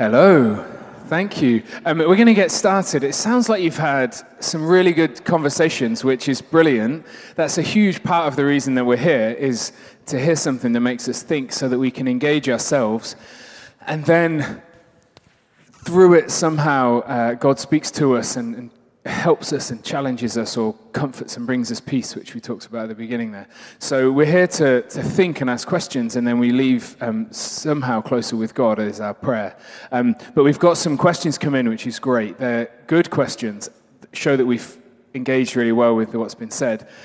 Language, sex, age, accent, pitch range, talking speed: English, male, 20-39, British, 125-170 Hz, 195 wpm